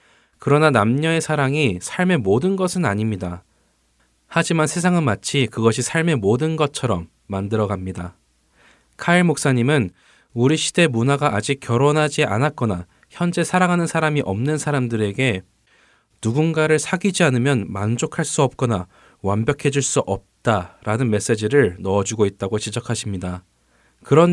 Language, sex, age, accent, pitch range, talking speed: English, male, 20-39, Korean, 100-145 Hz, 105 wpm